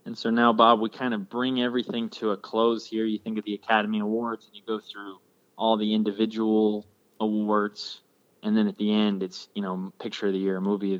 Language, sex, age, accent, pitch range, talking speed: English, male, 20-39, American, 95-105 Hz, 225 wpm